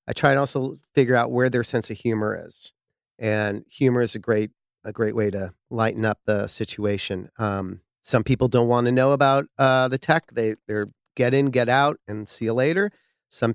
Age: 40-59